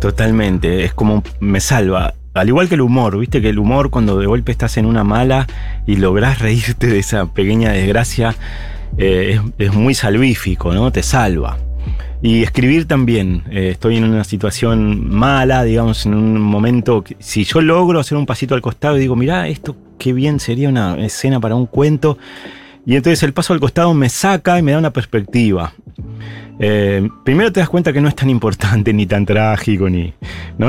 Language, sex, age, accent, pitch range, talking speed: Spanish, male, 30-49, Argentinian, 100-135 Hz, 190 wpm